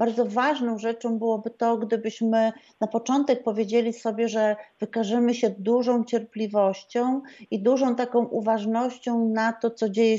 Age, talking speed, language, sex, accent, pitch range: 40-59, 135 wpm, Polish, female, native, 210-240 Hz